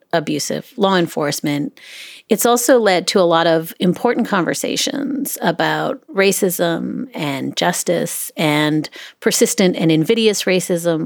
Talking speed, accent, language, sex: 115 wpm, American, English, female